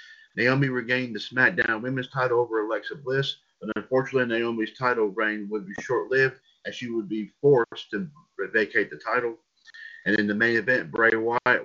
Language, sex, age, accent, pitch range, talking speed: English, male, 50-69, American, 115-145 Hz, 175 wpm